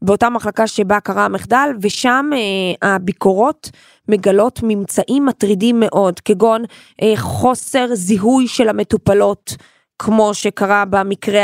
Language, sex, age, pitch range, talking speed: Hebrew, female, 20-39, 200-240 Hz, 110 wpm